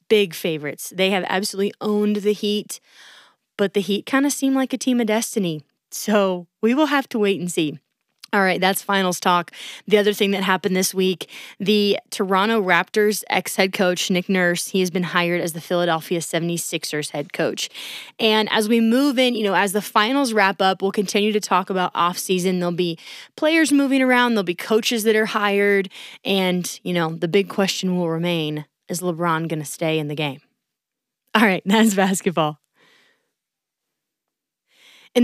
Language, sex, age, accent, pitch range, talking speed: English, female, 20-39, American, 175-215 Hz, 180 wpm